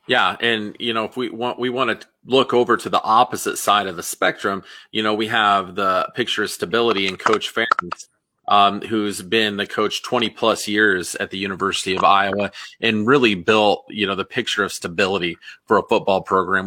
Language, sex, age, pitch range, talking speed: English, male, 30-49, 100-115 Hz, 200 wpm